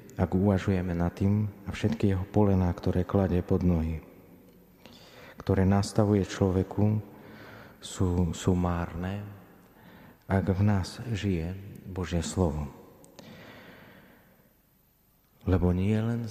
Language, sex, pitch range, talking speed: Slovak, male, 90-100 Hz, 100 wpm